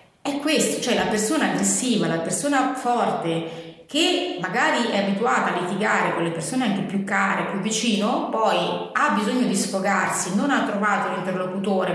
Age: 30-49